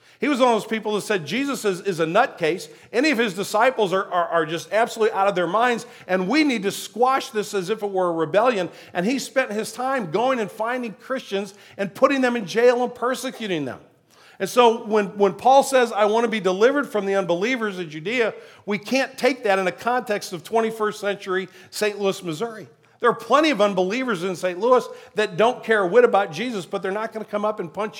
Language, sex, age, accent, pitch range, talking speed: English, male, 50-69, American, 190-230 Hz, 230 wpm